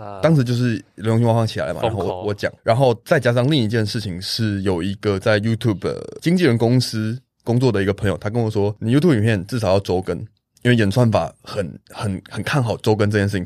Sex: male